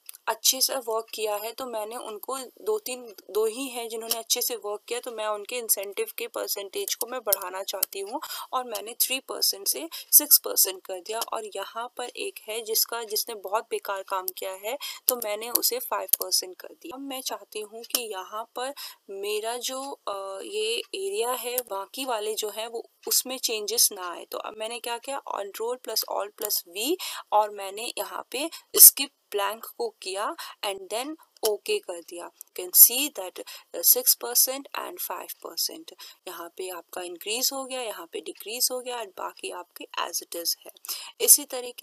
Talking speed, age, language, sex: 130 wpm, 20-39, English, female